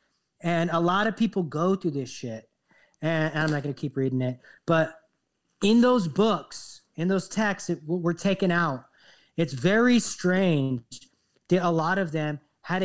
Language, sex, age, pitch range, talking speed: English, male, 40-59, 155-215 Hz, 175 wpm